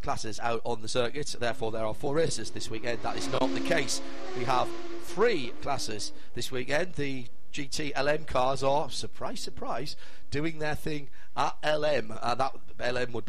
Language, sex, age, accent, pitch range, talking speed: English, male, 40-59, British, 115-135 Hz, 175 wpm